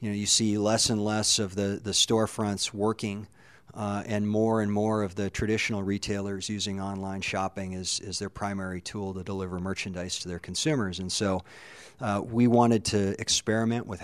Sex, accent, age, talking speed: male, American, 40-59, 185 wpm